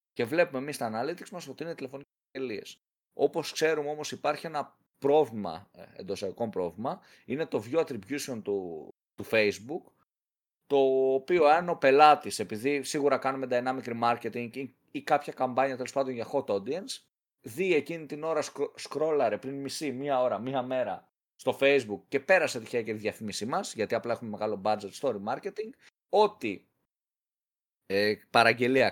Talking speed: 155 wpm